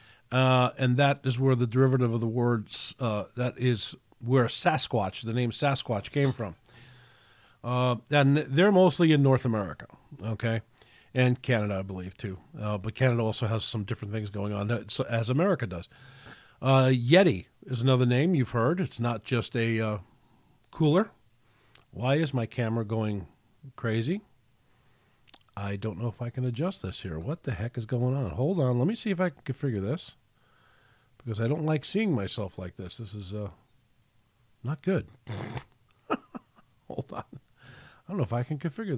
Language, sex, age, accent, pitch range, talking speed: English, male, 50-69, American, 110-130 Hz, 170 wpm